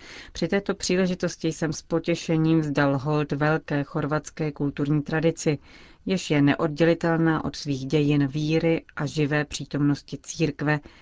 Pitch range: 145-165 Hz